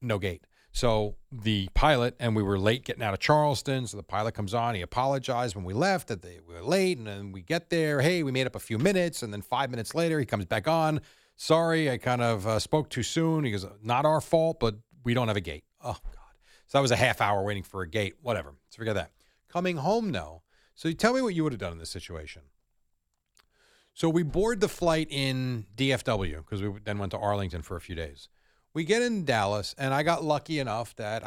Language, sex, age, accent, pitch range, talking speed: English, male, 40-59, American, 100-155 Hz, 240 wpm